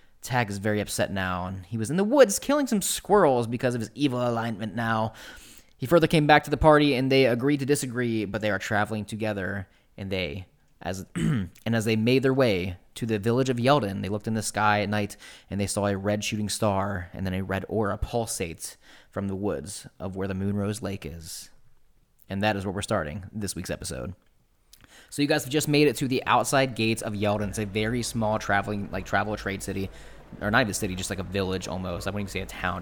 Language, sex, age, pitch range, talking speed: English, male, 20-39, 100-125 Hz, 230 wpm